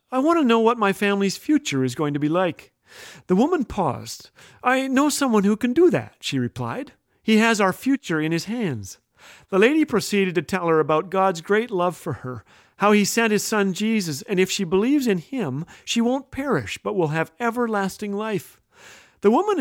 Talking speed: 200 wpm